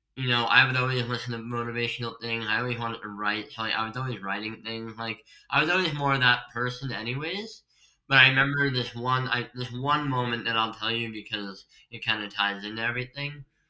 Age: 20-39